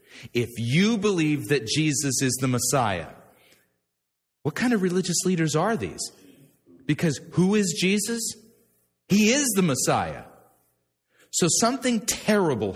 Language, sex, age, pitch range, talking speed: English, male, 40-59, 105-175 Hz, 120 wpm